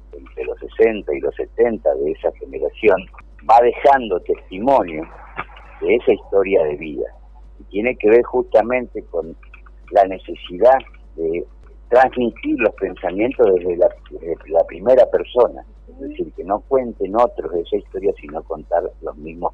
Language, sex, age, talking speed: Spanish, male, 50-69, 145 wpm